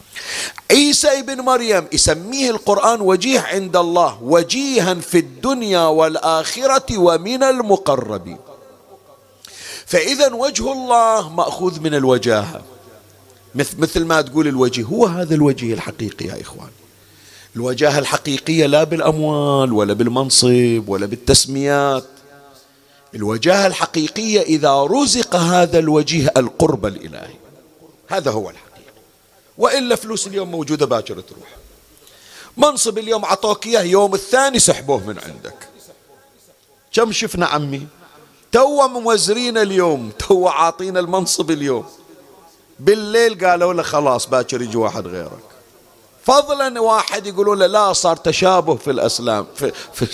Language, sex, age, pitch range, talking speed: Arabic, male, 50-69, 140-215 Hz, 110 wpm